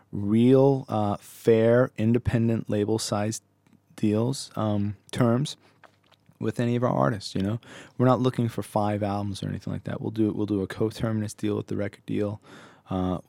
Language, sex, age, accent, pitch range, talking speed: English, male, 20-39, American, 95-120 Hz, 165 wpm